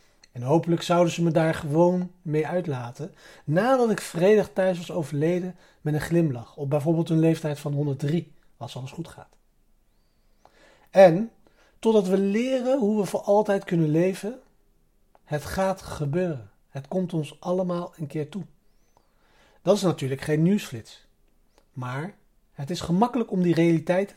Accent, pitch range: Dutch, 145-190 Hz